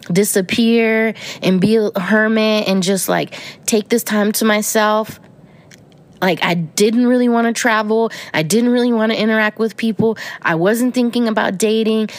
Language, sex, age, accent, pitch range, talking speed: English, female, 20-39, American, 180-225 Hz, 160 wpm